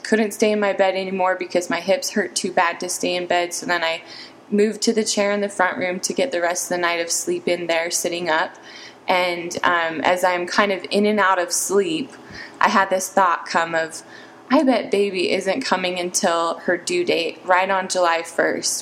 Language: English